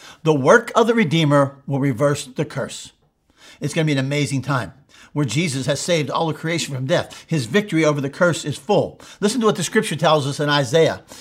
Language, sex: English, male